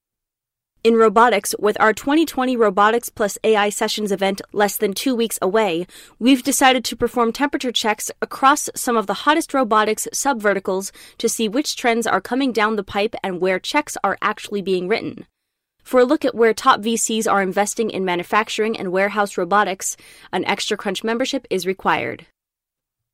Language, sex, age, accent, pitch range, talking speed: English, female, 20-39, American, 200-245 Hz, 165 wpm